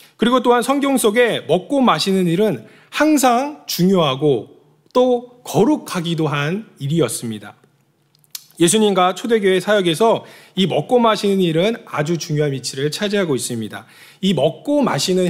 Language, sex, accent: Korean, male, native